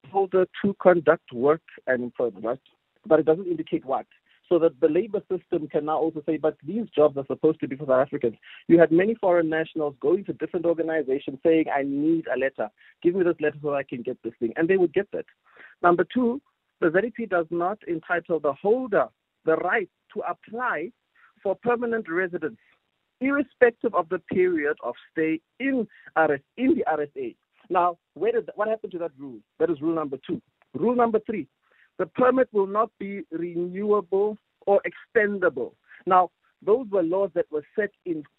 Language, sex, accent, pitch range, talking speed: English, male, South African, 160-210 Hz, 185 wpm